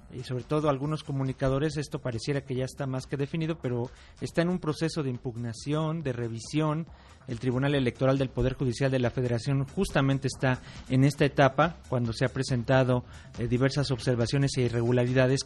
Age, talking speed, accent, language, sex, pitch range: 40-59, 175 wpm, Mexican, Spanish, male, 125-150 Hz